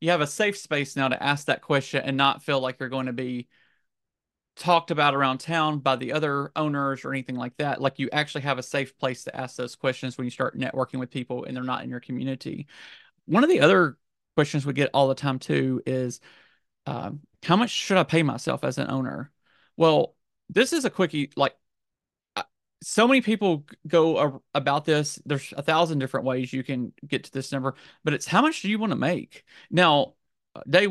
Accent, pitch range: American, 135-165 Hz